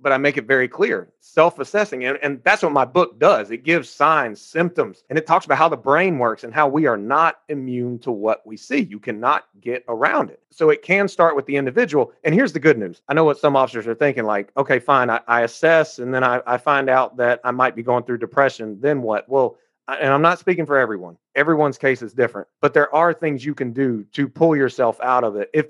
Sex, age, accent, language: male, 30-49, American, English